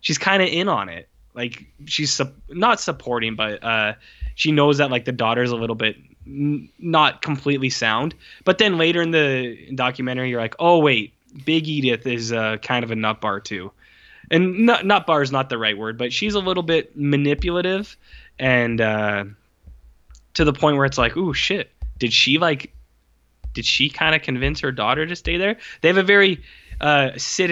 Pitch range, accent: 120-155 Hz, American